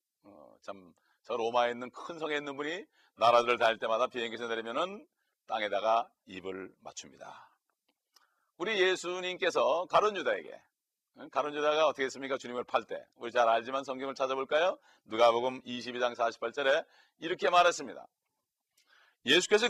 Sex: male